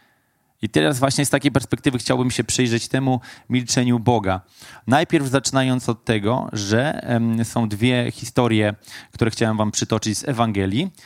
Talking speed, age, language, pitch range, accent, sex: 140 wpm, 20-39, Polish, 115-150 Hz, native, male